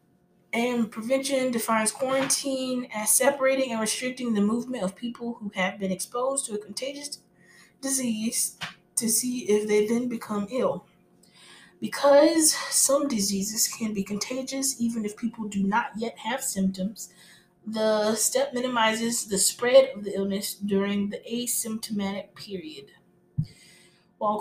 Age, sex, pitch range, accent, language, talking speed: 20-39, female, 200-240 Hz, American, English, 135 wpm